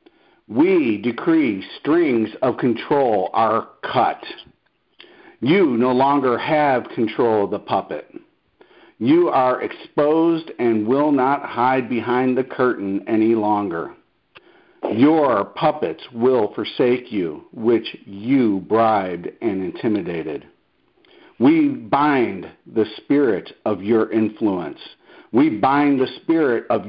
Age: 50-69